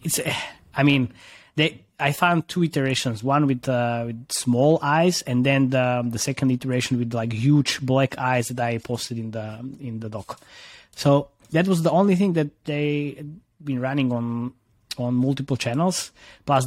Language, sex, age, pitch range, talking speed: English, male, 20-39, 115-135 Hz, 175 wpm